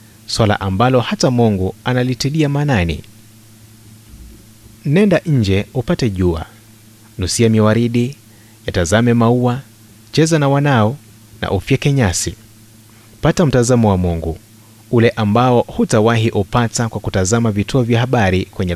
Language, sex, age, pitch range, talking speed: Swahili, male, 30-49, 105-125 Hz, 110 wpm